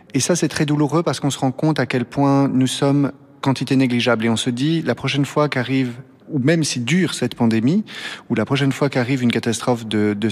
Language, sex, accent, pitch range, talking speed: French, male, French, 120-145 Hz, 235 wpm